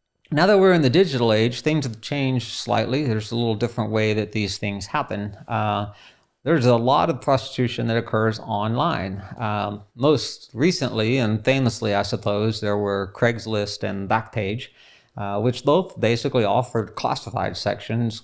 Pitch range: 105-125 Hz